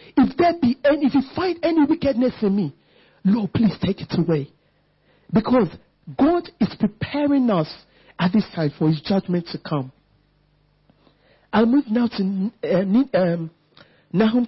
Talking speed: 140 wpm